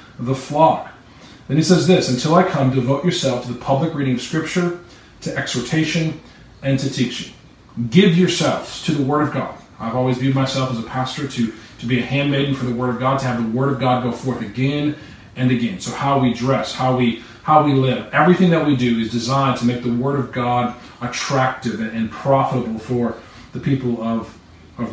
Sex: male